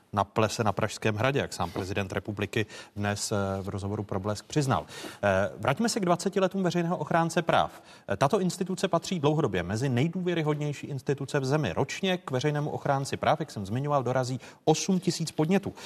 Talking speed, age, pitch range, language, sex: 165 wpm, 30-49, 115-150 Hz, Czech, male